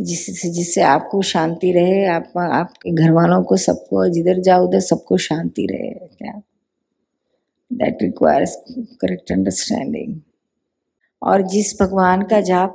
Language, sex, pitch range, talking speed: Hindi, female, 170-195 Hz, 125 wpm